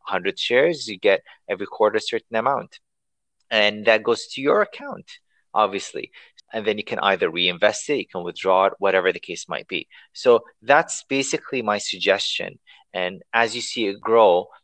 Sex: male